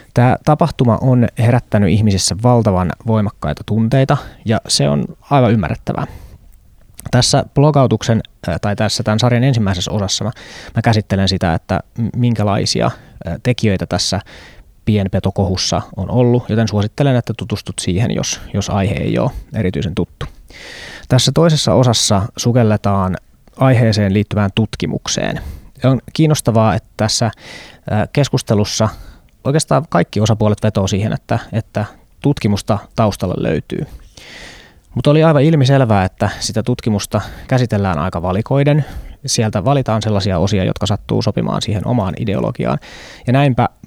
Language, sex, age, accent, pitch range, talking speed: Finnish, male, 20-39, native, 100-125 Hz, 120 wpm